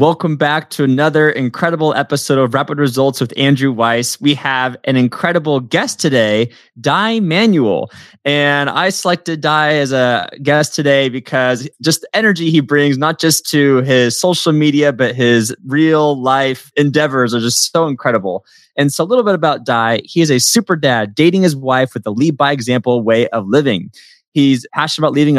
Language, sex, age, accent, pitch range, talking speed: English, male, 20-39, American, 125-155 Hz, 180 wpm